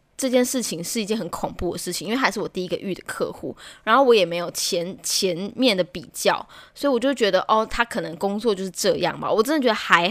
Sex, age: female, 10-29